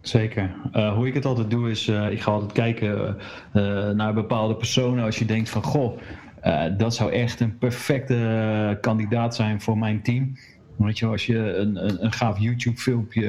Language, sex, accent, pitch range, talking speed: Dutch, male, Dutch, 100-115 Hz, 205 wpm